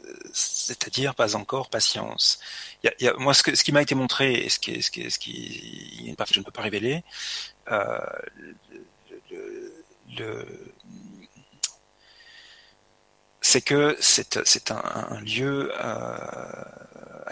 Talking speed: 155 wpm